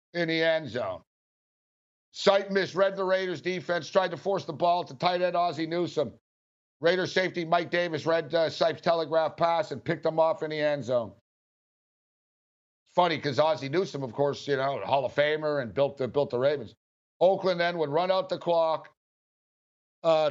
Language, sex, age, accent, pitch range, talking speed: English, male, 60-79, American, 135-170 Hz, 180 wpm